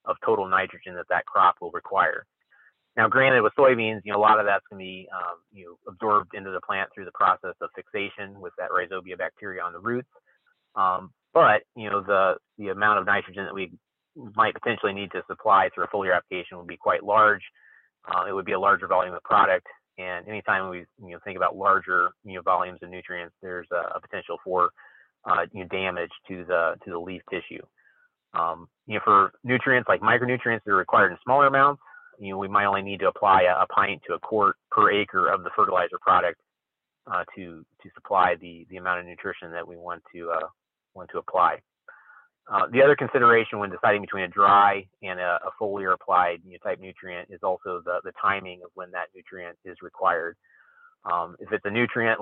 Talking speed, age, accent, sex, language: 210 wpm, 30-49, American, male, English